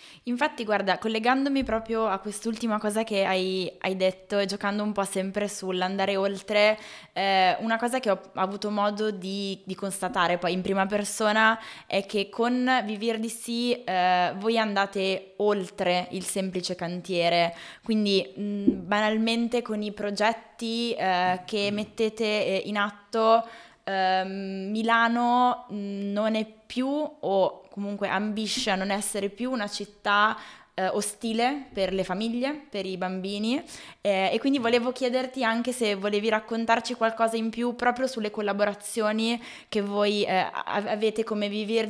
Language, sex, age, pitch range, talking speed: Italian, female, 20-39, 195-230 Hz, 135 wpm